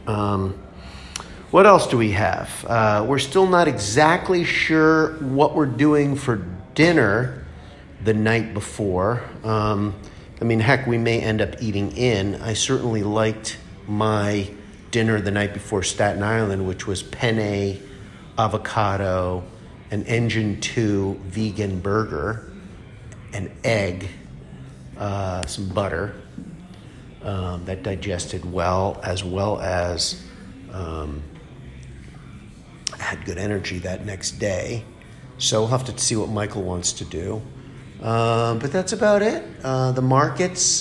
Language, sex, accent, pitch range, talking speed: English, male, American, 95-115 Hz, 125 wpm